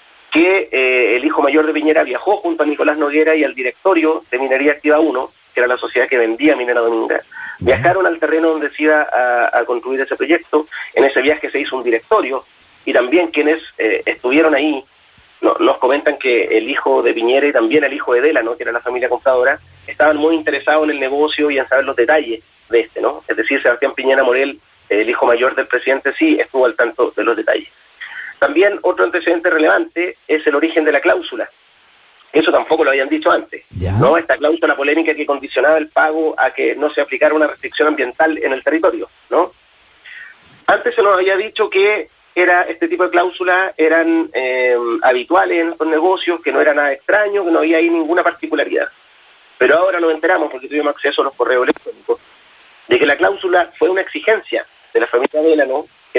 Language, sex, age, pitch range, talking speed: Spanish, male, 40-59, 145-185 Hz, 200 wpm